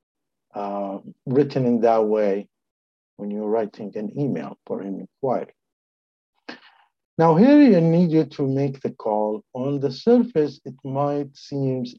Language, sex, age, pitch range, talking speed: English, male, 50-69, 105-140 Hz, 140 wpm